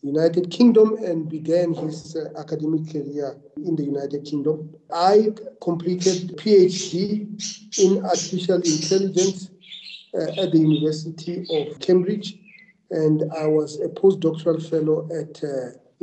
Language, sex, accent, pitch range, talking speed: English, male, South African, 160-210 Hz, 120 wpm